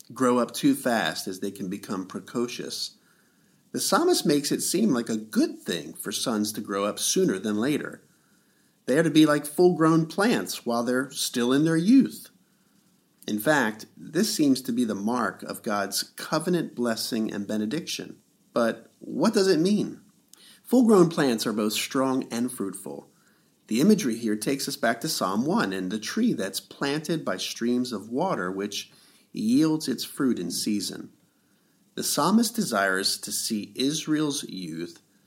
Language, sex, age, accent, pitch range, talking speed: English, male, 50-69, American, 105-165 Hz, 165 wpm